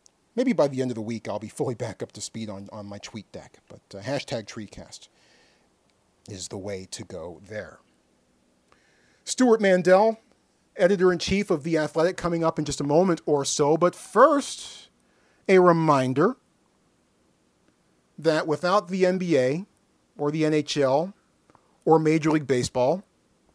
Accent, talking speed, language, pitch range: American, 150 wpm, English, 115-170 Hz